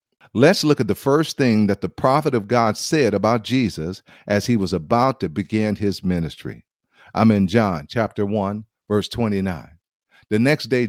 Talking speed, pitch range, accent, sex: 175 wpm, 95-130 Hz, American, male